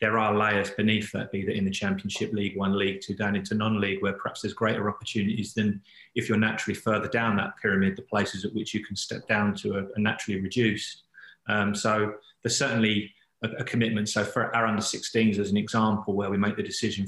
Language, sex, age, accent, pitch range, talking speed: English, male, 30-49, British, 105-110 Hz, 215 wpm